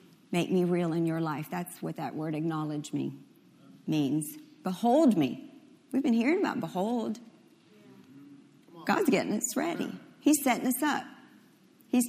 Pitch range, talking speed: 225-315 Hz, 145 wpm